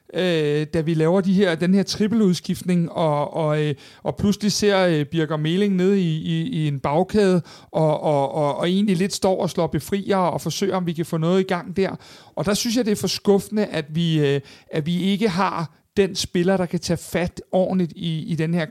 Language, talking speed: Danish, 210 wpm